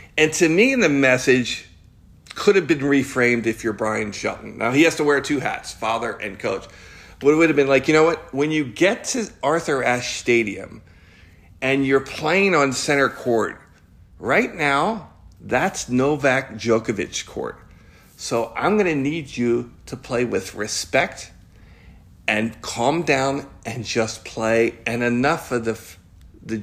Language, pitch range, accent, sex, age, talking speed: English, 110-135 Hz, American, male, 50-69, 160 wpm